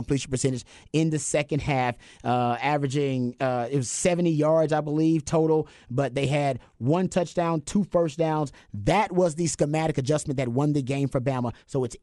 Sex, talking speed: male, 185 wpm